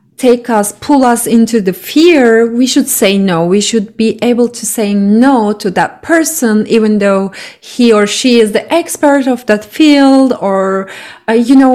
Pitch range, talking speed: 195-250 Hz, 185 wpm